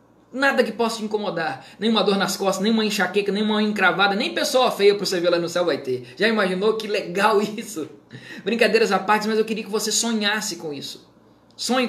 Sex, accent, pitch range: male, Brazilian, 170-205 Hz